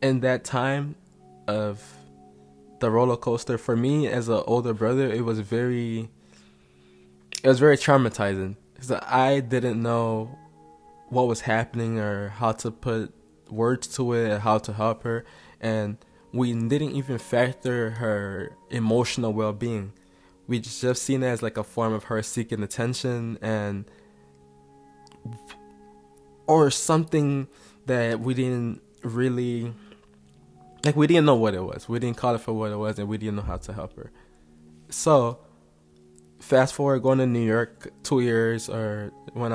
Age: 20-39